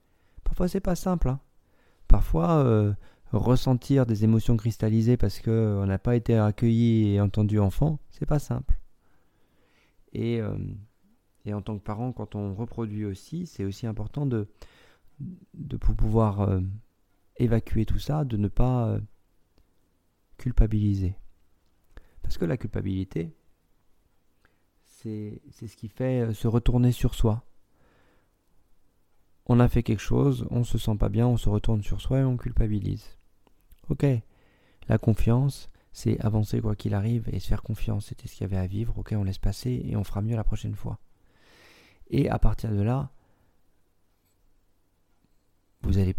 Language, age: French, 40-59